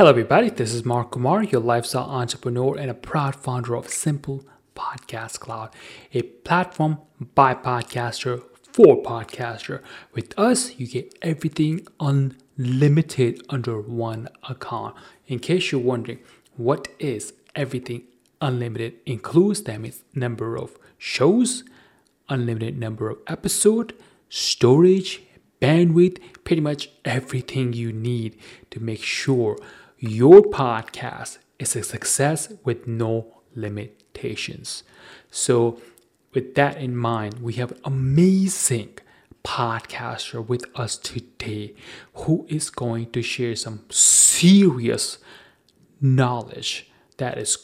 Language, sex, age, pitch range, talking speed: English, male, 30-49, 120-155 Hz, 115 wpm